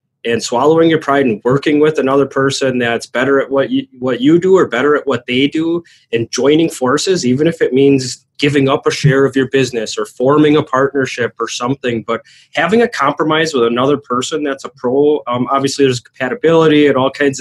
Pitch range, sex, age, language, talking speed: 120-140 Hz, male, 20-39, English, 205 wpm